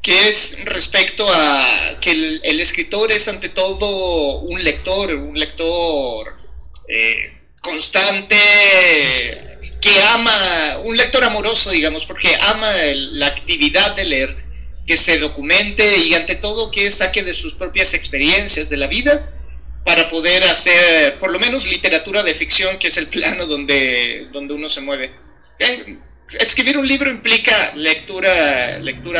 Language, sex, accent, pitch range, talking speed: Spanish, male, Mexican, 140-220 Hz, 140 wpm